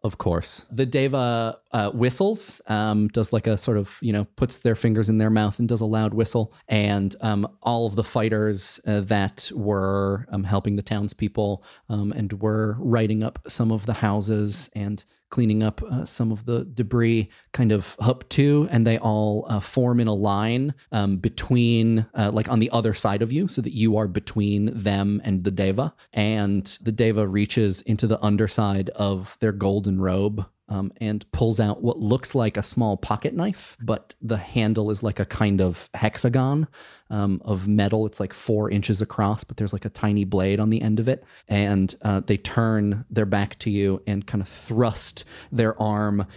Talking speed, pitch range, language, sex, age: 195 wpm, 105-115 Hz, English, male, 30-49